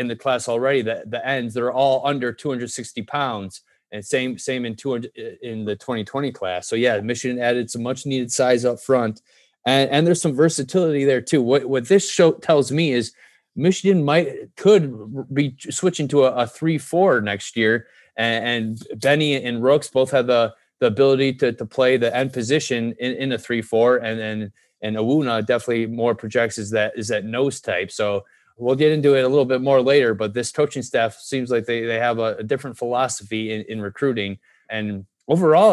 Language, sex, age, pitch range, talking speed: English, male, 20-39, 115-140 Hz, 200 wpm